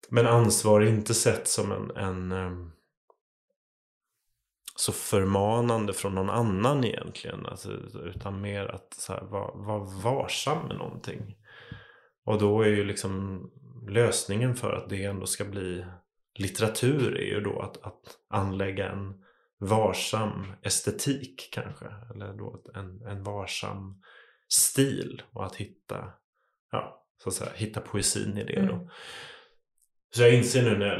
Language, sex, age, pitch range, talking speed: Swedish, male, 30-49, 100-120 Hz, 135 wpm